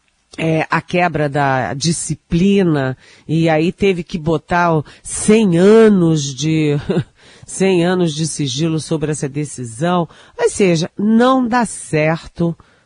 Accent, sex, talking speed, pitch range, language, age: Brazilian, female, 115 wpm, 150-185 Hz, Portuguese, 40-59